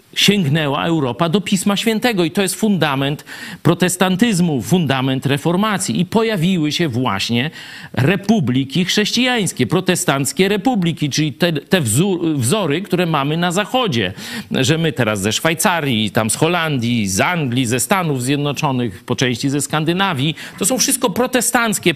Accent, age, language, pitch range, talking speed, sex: native, 50-69, Polish, 125-190 Hz, 135 wpm, male